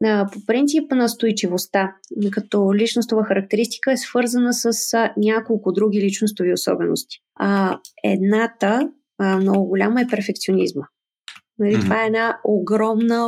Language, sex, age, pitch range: Bulgarian, female, 20-39, 210-255 Hz